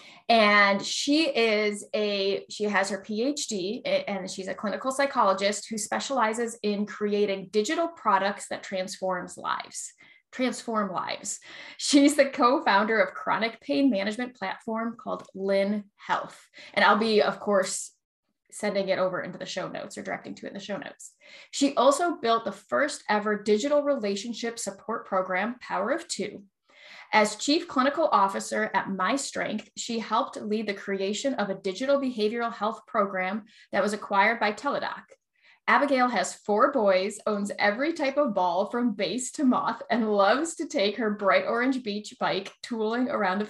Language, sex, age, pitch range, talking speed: English, female, 20-39, 195-250 Hz, 160 wpm